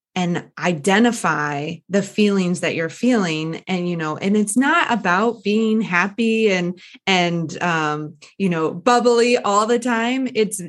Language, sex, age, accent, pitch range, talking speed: English, female, 20-39, American, 170-215 Hz, 145 wpm